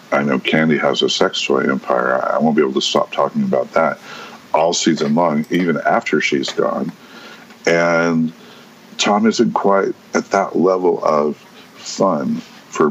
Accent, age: American, 50-69